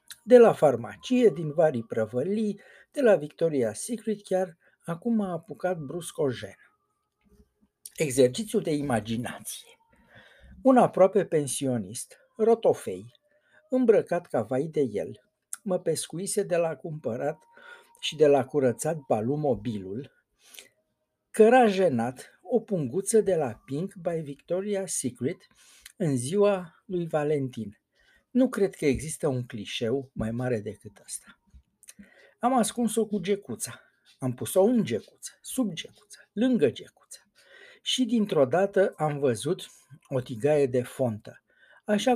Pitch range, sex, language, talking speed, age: 130-205 Hz, male, Romanian, 120 wpm, 60-79